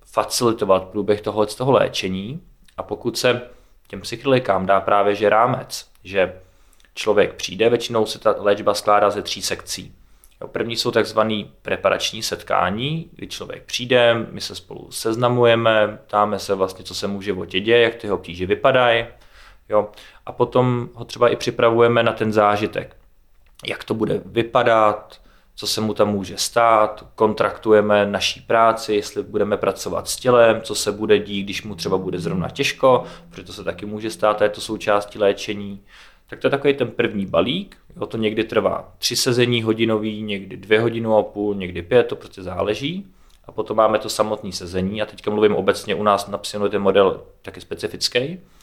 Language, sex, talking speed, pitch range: Slovak, male, 170 wpm, 100-115 Hz